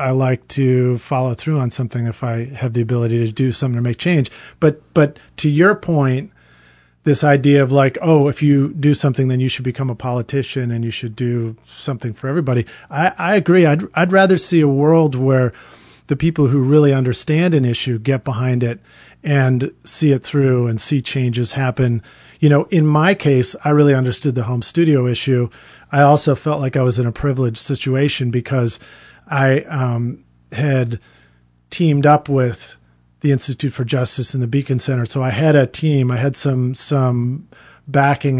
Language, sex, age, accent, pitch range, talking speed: English, male, 40-59, American, 120-145 Hz, 190 wpm